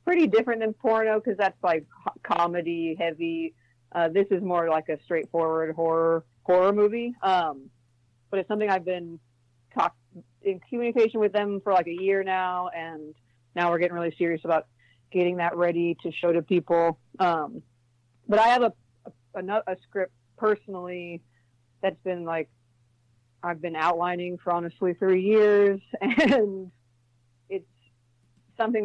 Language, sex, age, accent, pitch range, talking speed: English, female, 40-59, American, 155-190 Hz, 145 wpm